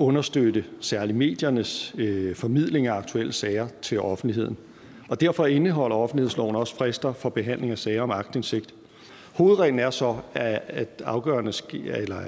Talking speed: 135 wpm